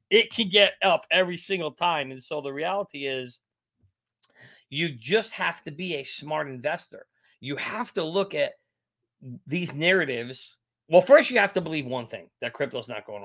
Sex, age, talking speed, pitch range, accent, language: male, 40-59, 180 wpm, 130-190 Hz, American, English